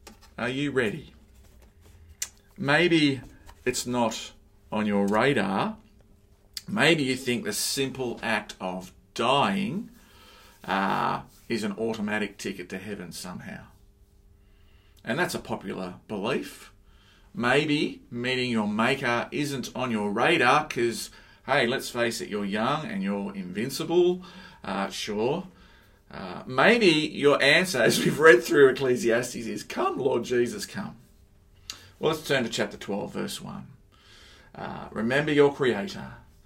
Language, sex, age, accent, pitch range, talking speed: English, male, 40-59, Australian, 100-135 Hz, 125 wpm